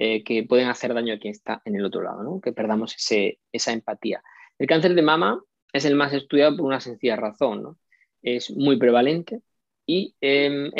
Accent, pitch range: Spanish, 120-140 Hz